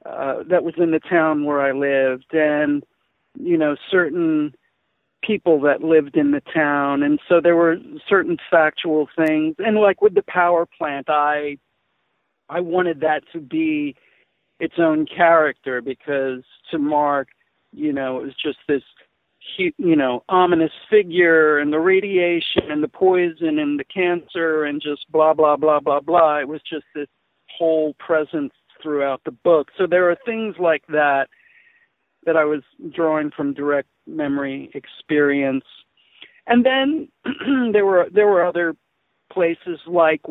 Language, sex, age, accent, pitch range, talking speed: English, male, 50-69, American, 150-180 Hz, 155 wpm